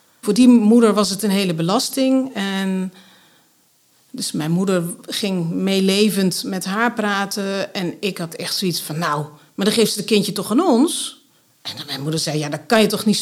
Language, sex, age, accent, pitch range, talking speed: Dutch, female, 50-69, Dutch, 165-240 Hz, 200 wpm